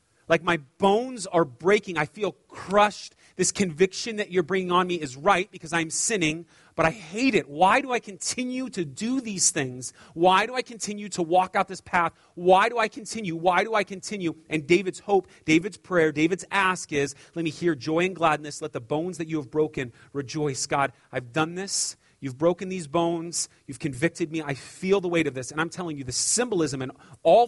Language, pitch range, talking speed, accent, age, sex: English, 140-180 Hz, 210 wpm, American, 30-49, male